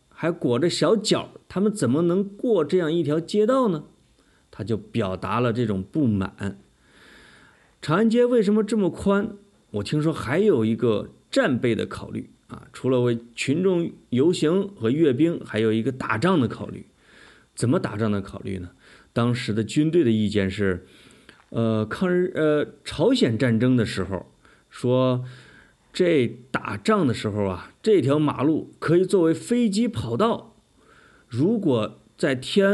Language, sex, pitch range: Chinese, male, 110-170 Hz